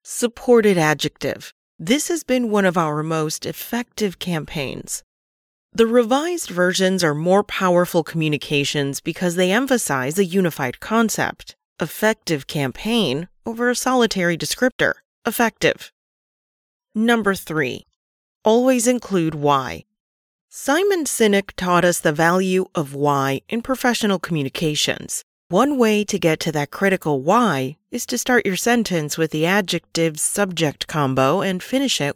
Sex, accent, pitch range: female, American, 155-225 Hz